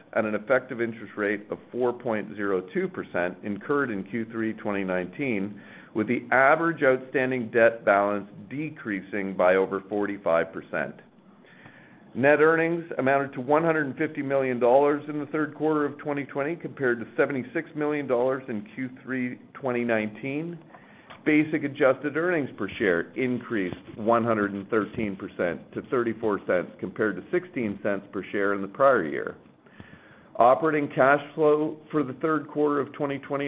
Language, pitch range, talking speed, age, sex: English, 105-150 Hz, 120 wpm, 50-69, male